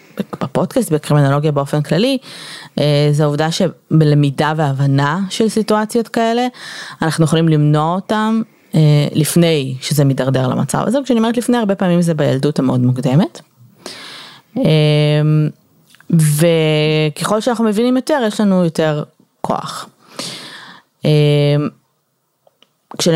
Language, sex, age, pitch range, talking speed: Hebrew, female, 20-39, 145-215 Hz, 100 wpm